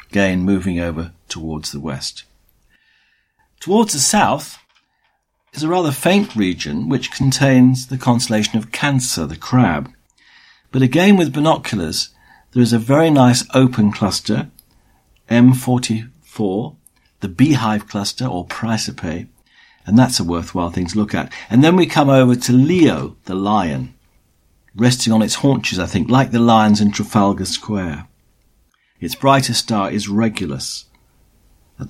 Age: 50-69